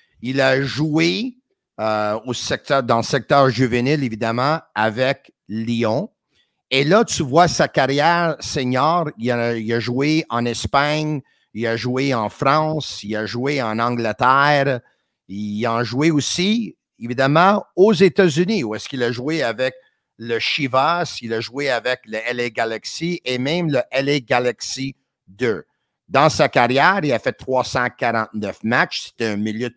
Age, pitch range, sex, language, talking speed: 50-69, 115-150 Hz, male, French, 150 wpm